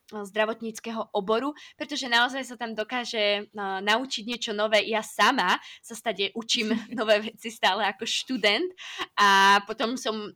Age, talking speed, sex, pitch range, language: 20-39, 135 wpm, female, 210-255 Hz, Slovak